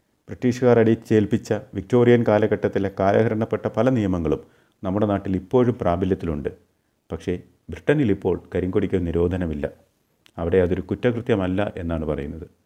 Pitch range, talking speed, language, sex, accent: 90-110 Hz, 100 wpm, Malayalam, male, native